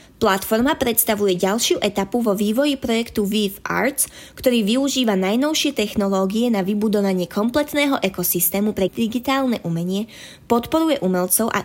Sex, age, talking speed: female, 20-39, 120 wpm